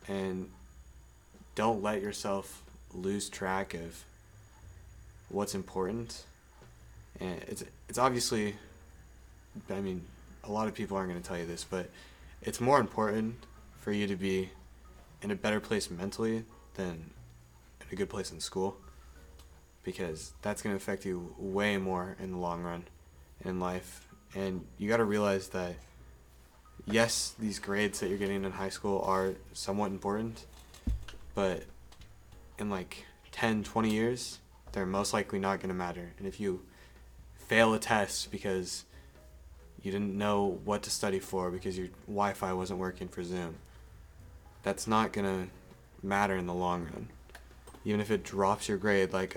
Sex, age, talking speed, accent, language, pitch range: male, 20-39, 150 wpm, American, English, 80-100 Hz